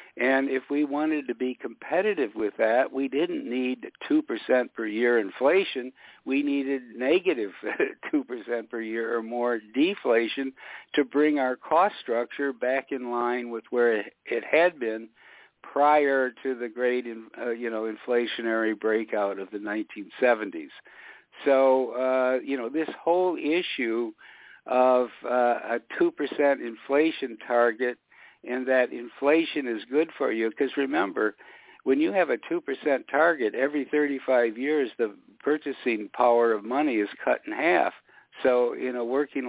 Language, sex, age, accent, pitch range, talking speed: English, male, 60-79, American, 120-145 Hz, 145 wpm